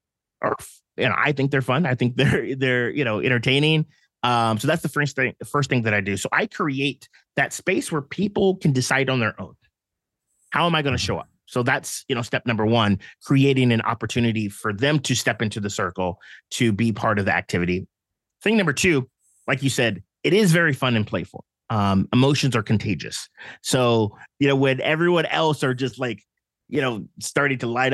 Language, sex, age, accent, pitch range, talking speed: English, male, 30-49, American, 105-140 Hz, 210 wpm